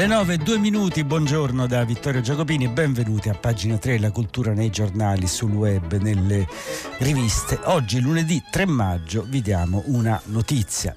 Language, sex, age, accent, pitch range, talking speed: Italian, male, 60-79, native, 90-115 Hz, 160 wpm